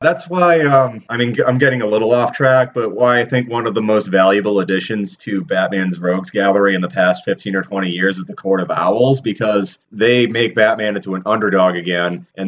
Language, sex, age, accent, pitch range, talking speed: English, male, 30-49, American, 95-110 Hz, 220 wpm